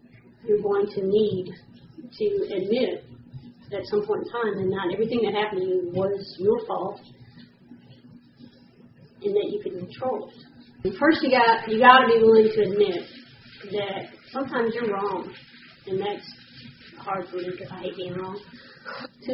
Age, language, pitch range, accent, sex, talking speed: 40-59, English, 190-250 Hz, American, female, 165 wpm